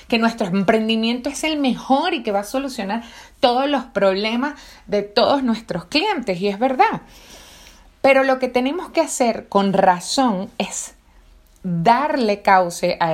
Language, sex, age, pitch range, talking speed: Spanish, female, 30-49, 180-235 Hz, 150 wpm